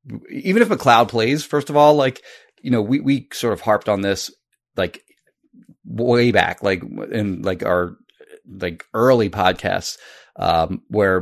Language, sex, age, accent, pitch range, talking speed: English, male, 30-49, American, 95-120 Hz, 155 wpm